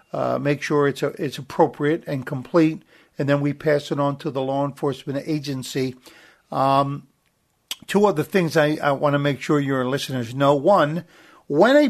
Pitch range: 140-175 Hz